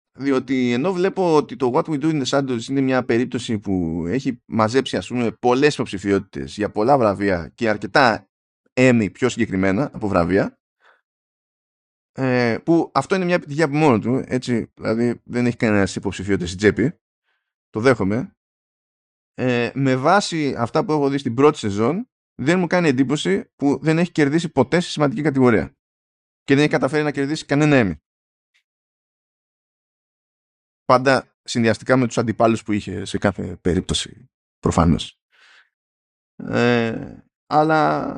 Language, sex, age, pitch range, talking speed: Greek, male, 20-39, 105-140 Hz, 145 wpm